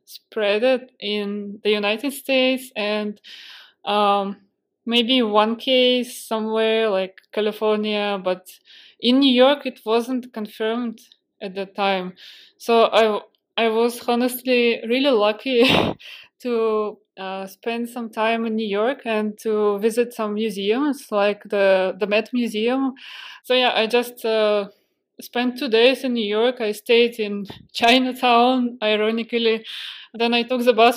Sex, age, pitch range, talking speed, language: female, 20-39, 210-240 Hz, 135 wpm, Russian